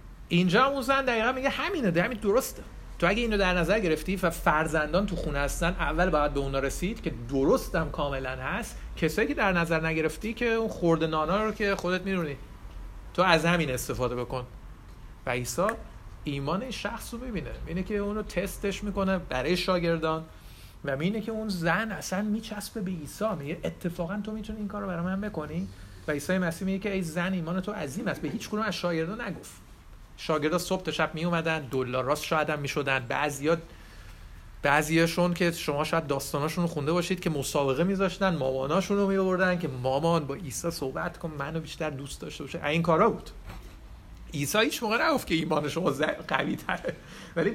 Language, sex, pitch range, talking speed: Persian, male, 140-190 Hz, 175 wpm